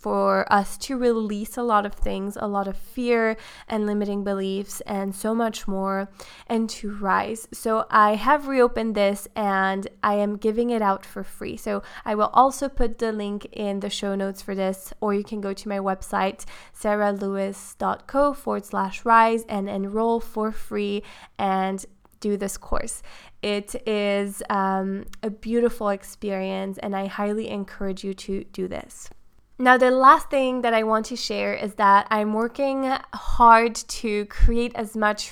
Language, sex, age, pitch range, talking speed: English, female, 20-39, 200-230 Hz, 170 wpm